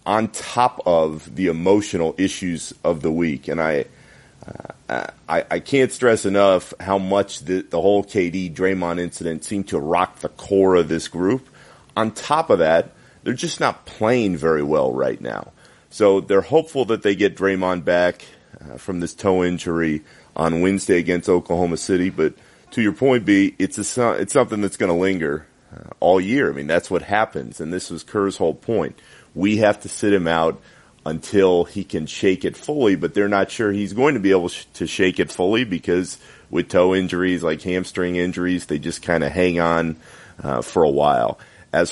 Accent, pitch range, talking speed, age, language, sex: American, 85-100 Hz, 190 wpm, 30-49, English, male